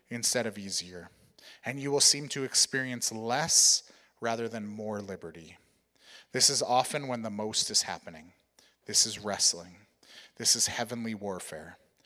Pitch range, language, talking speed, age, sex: 100-125 Hz, English, 145 wpm, 30-49, male